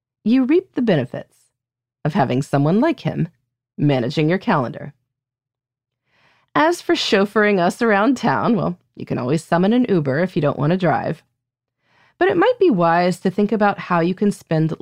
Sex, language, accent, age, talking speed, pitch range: female, English, American, 30-49, 175 wpm, 130-200 Hz